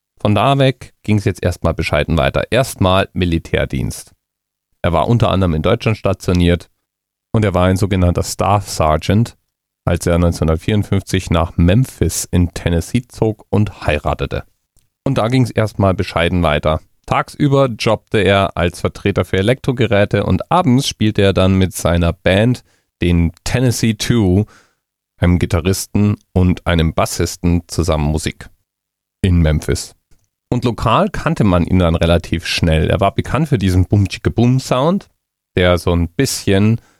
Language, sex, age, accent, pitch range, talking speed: German, male, 40-59, German, 85-115 Hz, 145 wpm